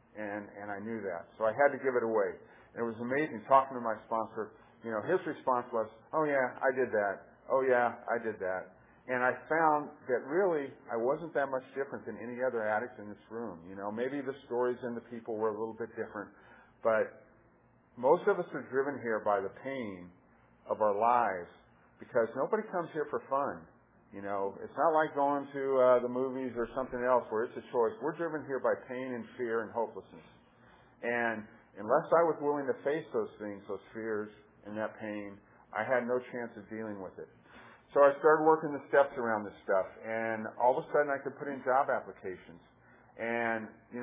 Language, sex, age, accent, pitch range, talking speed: English, male, 50-69, American, 110-135 Hz, 210 wpm